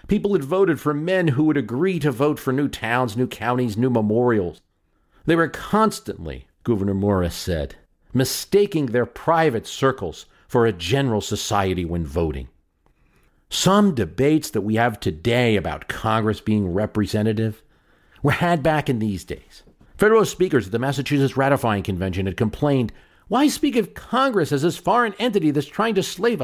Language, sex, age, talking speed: English, male, 50-69, 160 wpm